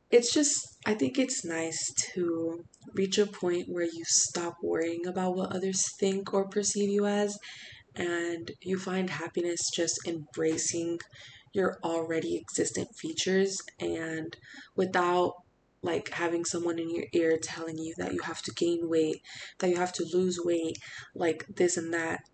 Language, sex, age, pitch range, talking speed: English, female, 20-39, 160-190 Hz, 155 wpm